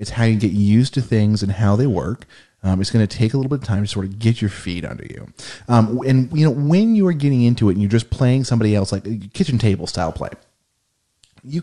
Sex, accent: male, American